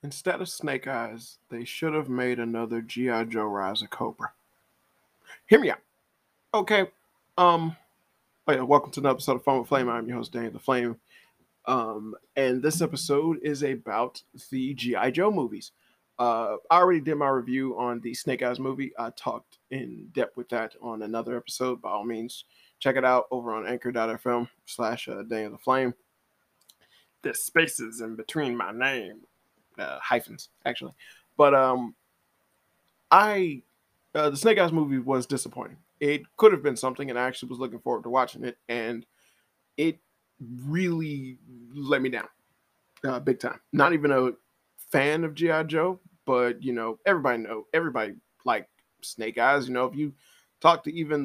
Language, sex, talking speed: English, male, 170 wpm